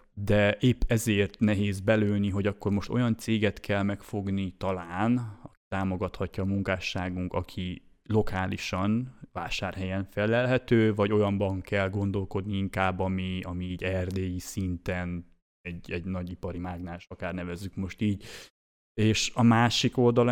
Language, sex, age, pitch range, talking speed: Hungarian, male, 20-39, 95-110 Hz, 125 wpm